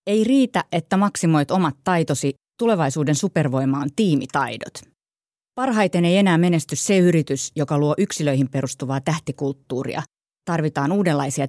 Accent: native